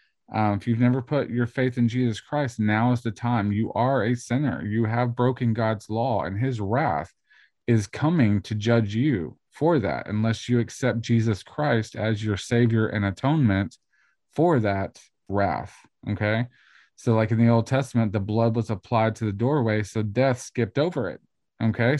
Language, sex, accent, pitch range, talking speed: English, male, American, 105-120 Hz, 180 wpm